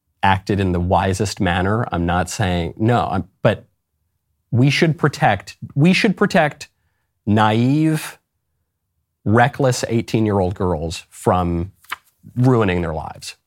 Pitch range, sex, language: 95-145 Hz, male, English